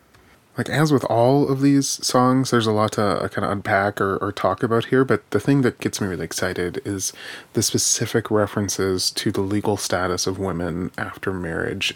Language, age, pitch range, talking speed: English, 20-39, 100-115 Hz, 200 wpm